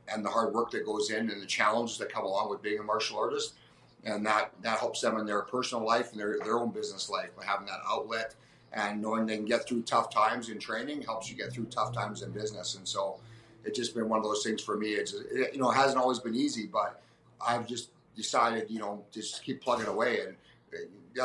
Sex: male